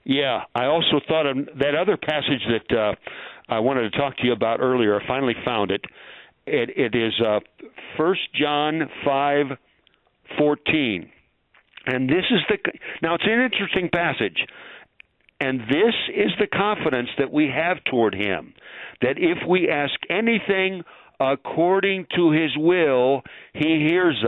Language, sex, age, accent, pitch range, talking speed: English, male, 60-79, American, 130-180 Hz, 150 wpm